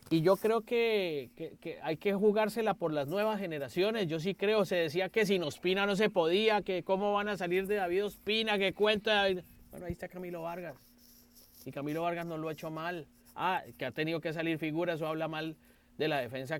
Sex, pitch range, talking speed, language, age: male, 155-205 Hz, 215 wpm, Spanish, 30-49